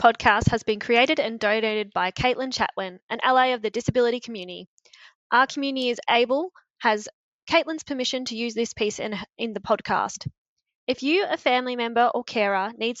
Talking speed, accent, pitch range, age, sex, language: 175 wpm, Australian, 210-265 Hz, 20-39, female, English